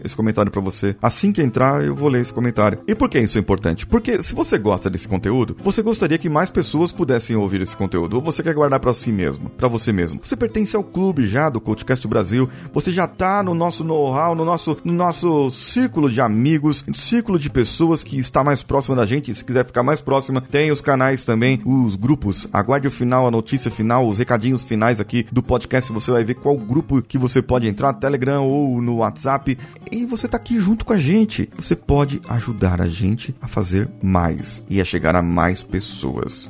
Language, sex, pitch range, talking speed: Portuguese, male, 110-155 Hz, 215 wpm